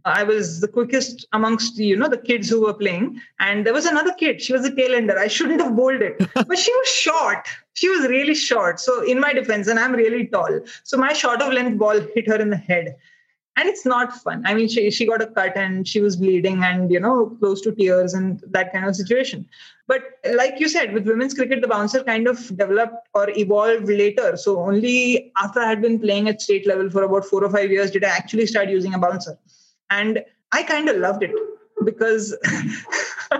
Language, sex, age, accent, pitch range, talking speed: English, female, 20-39, Indian, 205-265 Hz, 225 wpm